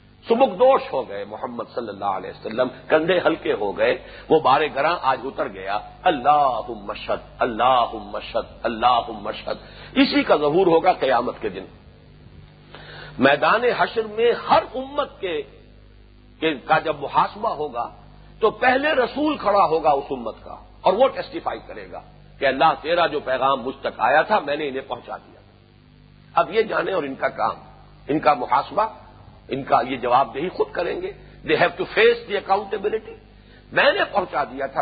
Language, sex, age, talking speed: English, male, 50-69, 155 wpm